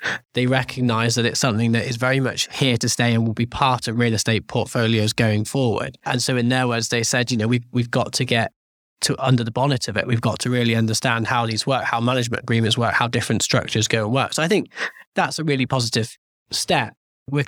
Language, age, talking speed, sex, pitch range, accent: English, 20-39, 240 wpm, male, 115-130 Hz, British